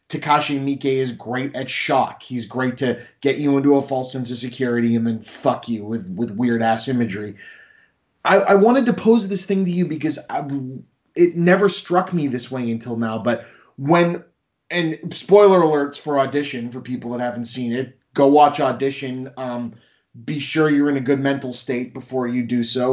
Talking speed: 195 wpm